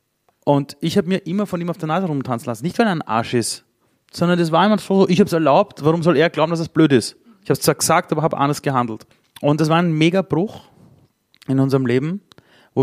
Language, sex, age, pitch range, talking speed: German, male, 30-49, 125-160 Hz, 250 wpm